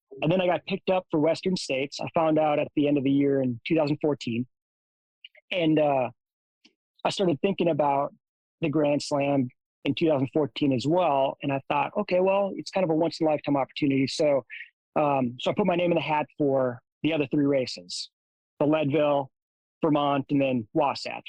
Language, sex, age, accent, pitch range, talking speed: English, male, 30-49, American, 140-165 Hz, 185 wpm